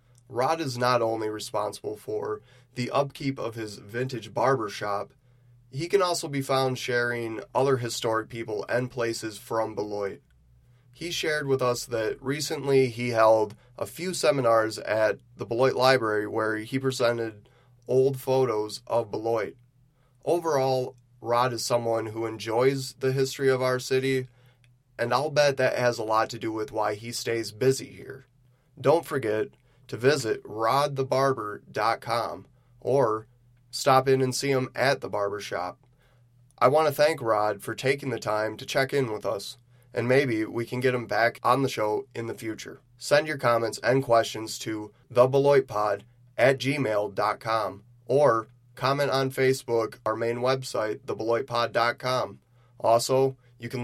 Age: 20-39